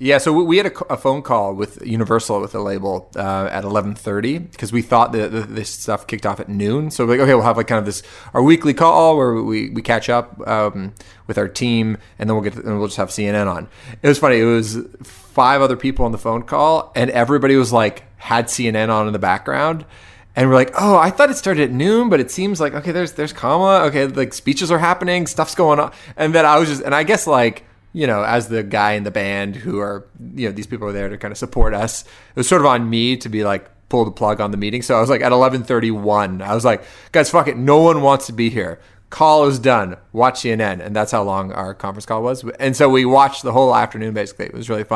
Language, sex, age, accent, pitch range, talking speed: English, male, 30-49, American, 105-140 Hz, 260 wpm